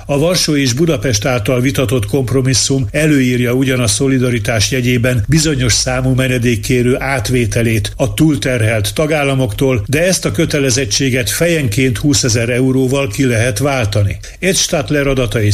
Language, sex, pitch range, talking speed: Hungarian, male, 115-140 Hz, 125 wpm